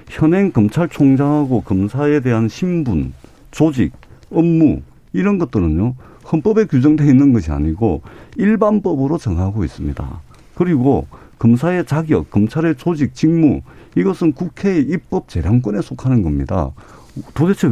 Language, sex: Korean, male